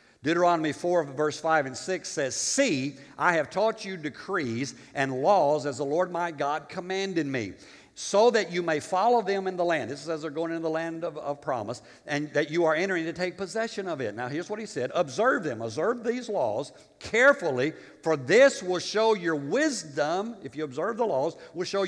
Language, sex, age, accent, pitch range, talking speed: English, male, 60-79, American, 145-215 Hz, 210 wpm